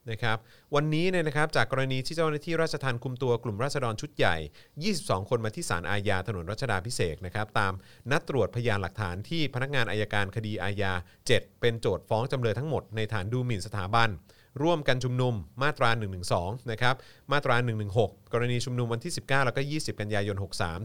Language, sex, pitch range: Thai, male, 105-135 Hz